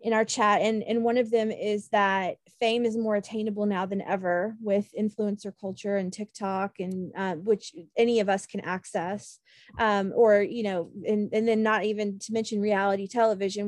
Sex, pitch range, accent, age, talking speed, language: female, 195-220 Hz, American, 20-39, 190 wpm, English